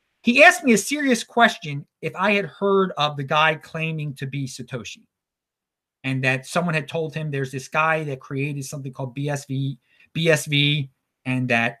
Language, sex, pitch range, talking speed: English, male, 135-185 Hz, 175 wpm